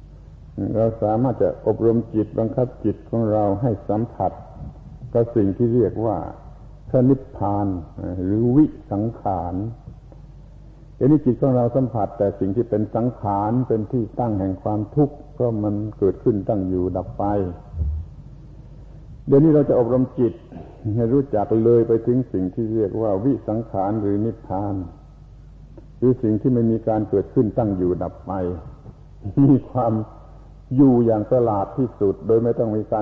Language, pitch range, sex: Thai, 95-120 Hz, male